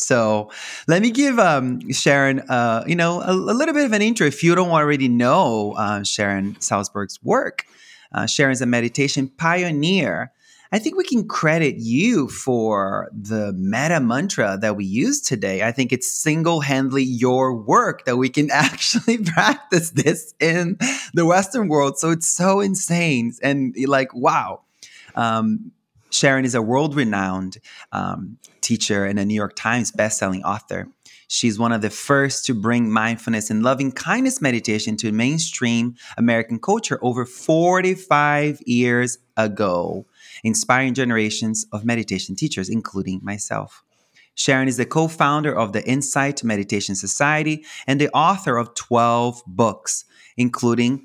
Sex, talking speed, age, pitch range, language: male, 145 wpm, 30-49, 110-160 Hz, English